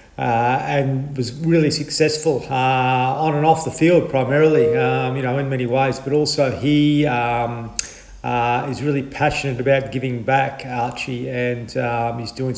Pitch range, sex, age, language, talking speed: 125-145 Hz, male, 40-59, English, 160 wpm